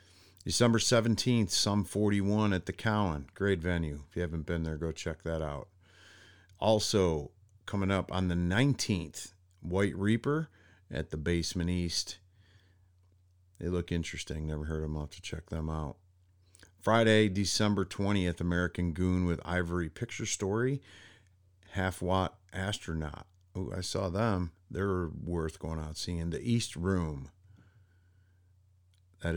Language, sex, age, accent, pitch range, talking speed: English, male, 50-69, American, 85-100 Hz, 135 wpm